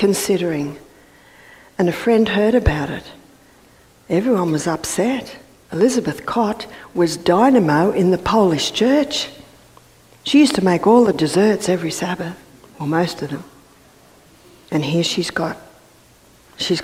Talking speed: 130 wpm